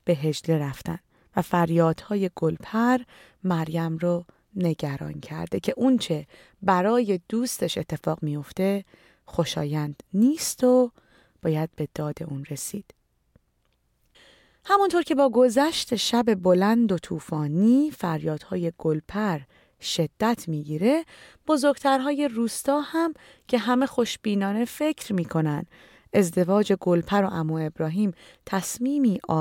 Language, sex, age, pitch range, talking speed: Persian, female, 30-49, 160-240 Hz, 105 wpm